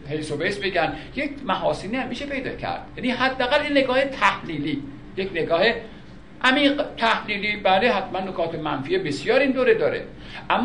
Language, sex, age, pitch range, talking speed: Persian, male, 50-69, 175-245 Hz, 150 wpm